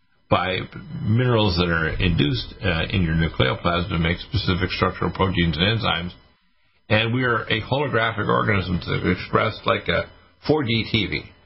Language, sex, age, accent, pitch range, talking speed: English, male, 50-69, American, 90-115 Hz, 145 wpm